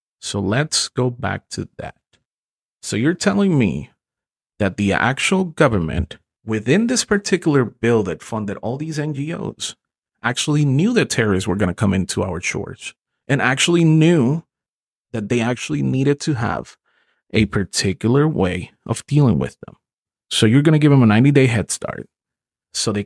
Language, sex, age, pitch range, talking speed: English, male, 30-49, 105-150 Hz, 160 wpm